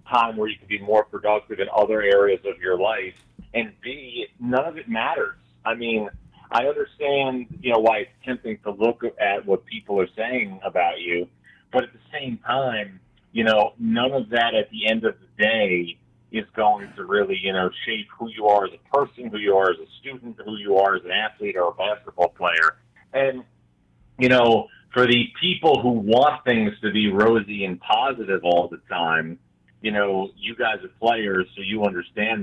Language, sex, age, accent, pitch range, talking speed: English, male, 30-49, American, 100-125 Hz, 200 wpm